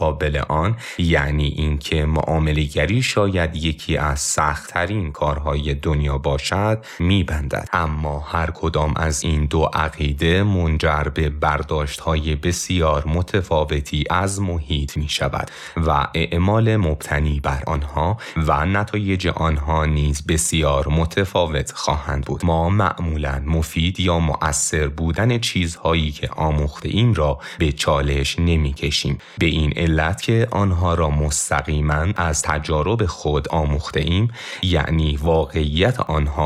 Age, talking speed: 30-49, 115 wpm